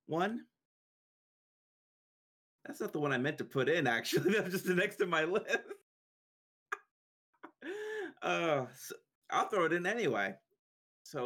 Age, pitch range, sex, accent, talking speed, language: 30-49, 110-135 Hz, male, American, 135 wpm, English